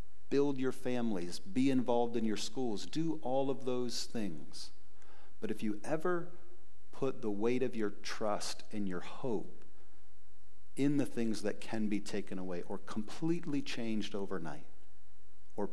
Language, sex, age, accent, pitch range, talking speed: English, male, 50-69, American, 95-110 Hz, 150 wpm